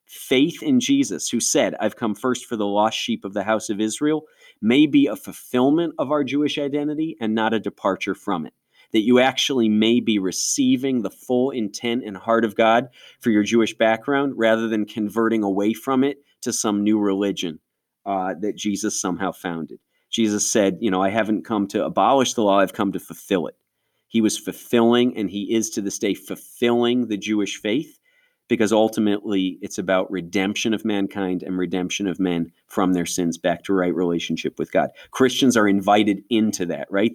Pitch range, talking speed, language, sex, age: 100-120 Hz, 190 wpm, English, male, 30-49